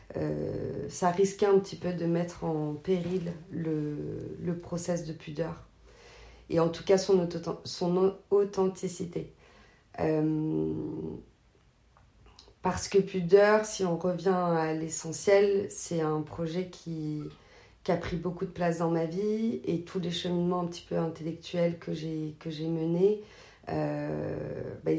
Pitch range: 150-180 Hz